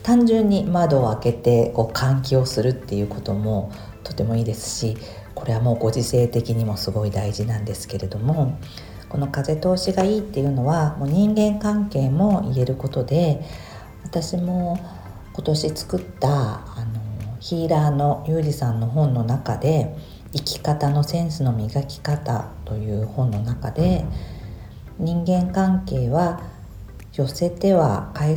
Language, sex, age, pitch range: Japanese, female, 50-69, 115-170 Hz